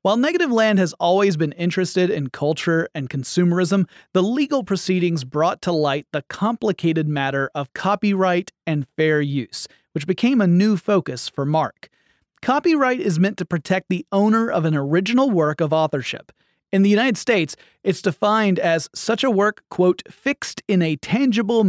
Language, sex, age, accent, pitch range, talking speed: English, male, 30-49, American, 150-205 Hz, 165 wpm